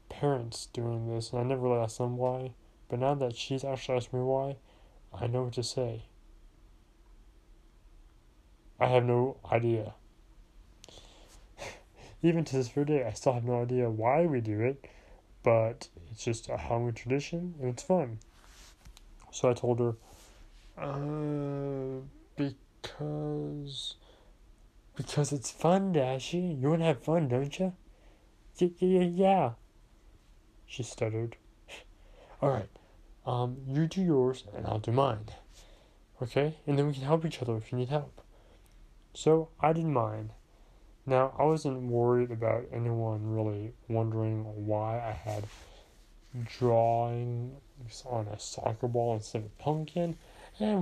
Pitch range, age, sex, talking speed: 110-145 Hz, 20-39, male, 135 wpm